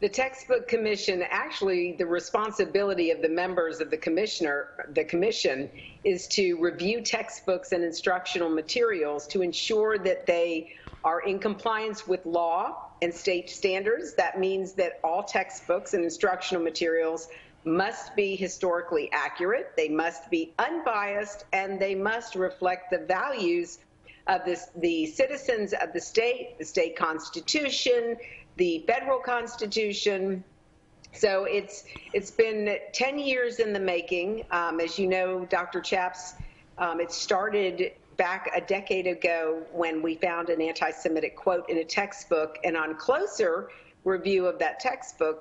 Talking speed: 140 wpm